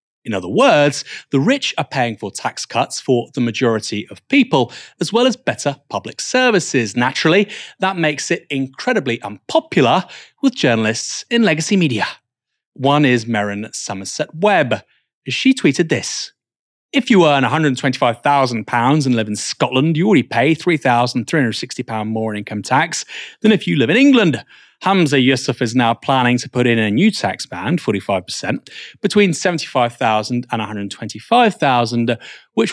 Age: 30-49